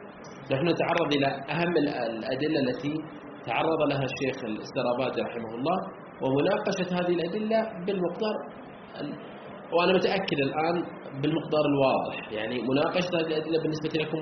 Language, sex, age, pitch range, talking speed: Arabic, male, 30-49, 120-155 Hz, 120 wpm